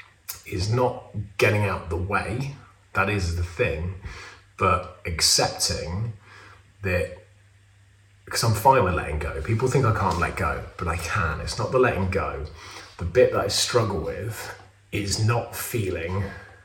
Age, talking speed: 30-49, 150 wpm